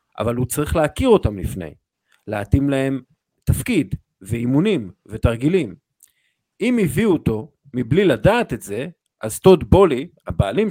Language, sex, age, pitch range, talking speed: Hebrew, male, 50-69, 120-165 Hz, 125 wpm